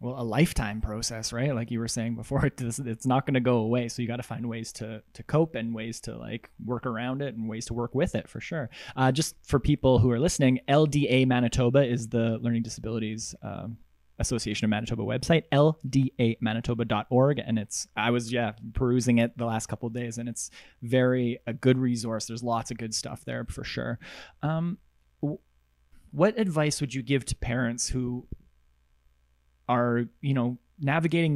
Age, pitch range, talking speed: 20-39, 115-130 Hz, 185 wpm